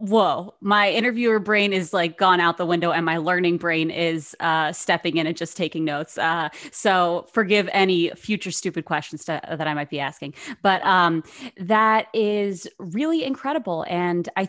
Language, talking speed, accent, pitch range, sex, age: English, 175 wpm, American, 160-205 Hz, female, 20-39